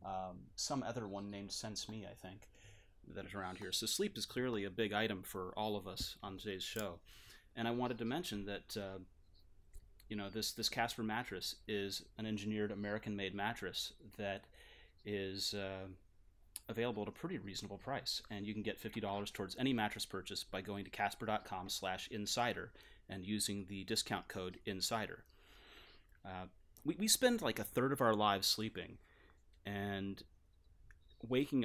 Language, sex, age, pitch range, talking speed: English, male, 30-49, 95-110 Hz, 165 wpm